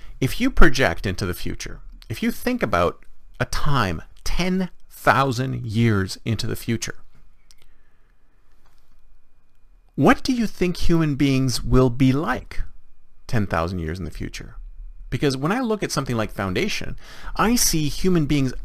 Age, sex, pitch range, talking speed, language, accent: 40-59, male, 120-180 Hz, 140 wpm, English, American